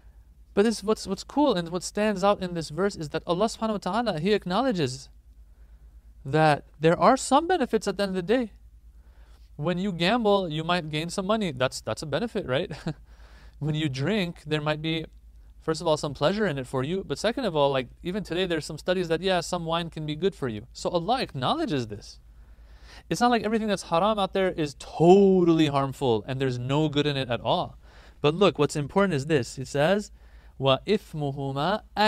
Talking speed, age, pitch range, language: 205 wpm, 30-49, 115-180 Hz, English